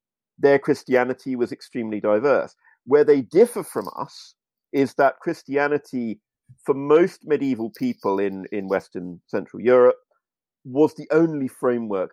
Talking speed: 130 wpm